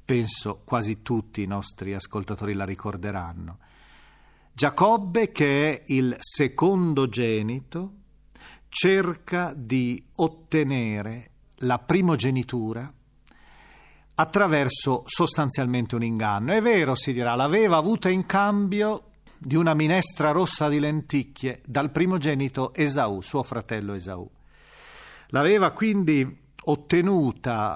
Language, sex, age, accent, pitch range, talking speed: Italian, male, 40-59, native, 115-160 Hz, 100 wpm